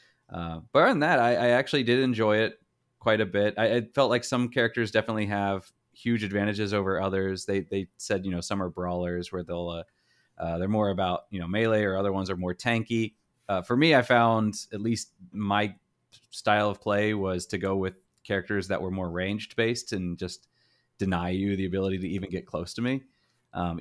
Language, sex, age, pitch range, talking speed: English, male, 30-49, 90-115 Hz, 210 wpm